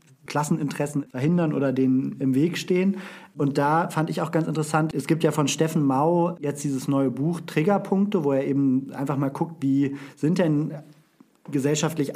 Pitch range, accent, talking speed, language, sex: 135-160 Hz, German, 175 wpm, German, male